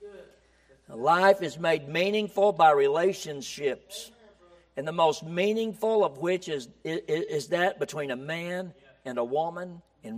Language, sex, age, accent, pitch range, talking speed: English, male, 60-79, American, 155-200 Hz, 135 wpm